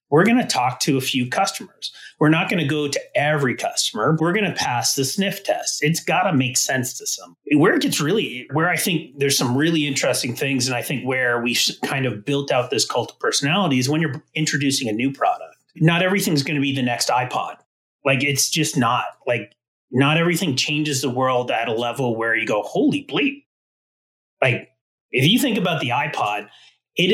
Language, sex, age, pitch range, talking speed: English, male, 30-49, 130-180 Hz, 210 wpm